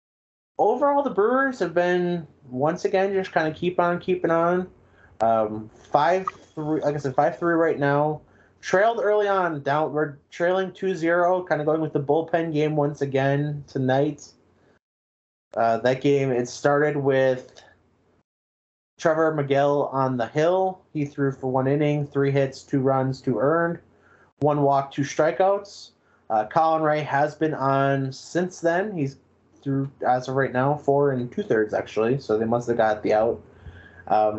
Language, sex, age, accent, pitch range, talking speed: English, male, 30-49, American, 120-155 Hz, 165 wpm